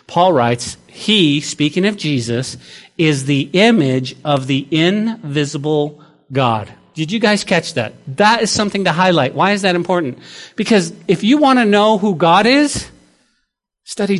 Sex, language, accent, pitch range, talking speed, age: male, English, American, 175-235 Hz, 155 wpm, 50-69